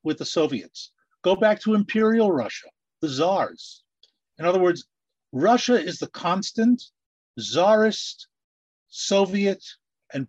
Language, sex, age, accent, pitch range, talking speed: English, male, 50-69, American, 130-180 Hz, 115 wpm